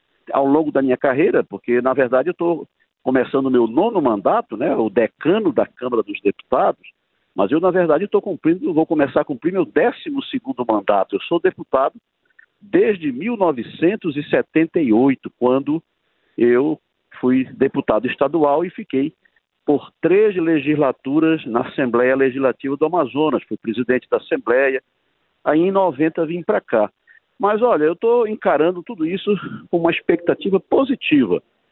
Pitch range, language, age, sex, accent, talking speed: 130-180 Hz, Portuguese, 50-69, male, Brazilian, 145 wpm